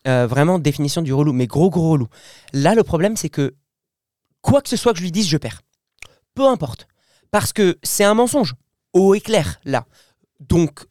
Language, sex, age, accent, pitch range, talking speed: French, male, 20-39, French, 140-195 Hz, 200 wpm